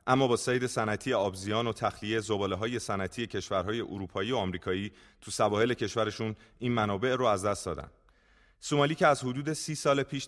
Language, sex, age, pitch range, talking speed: Persian, male, 30-49, 100-125 Hz, 175 wpm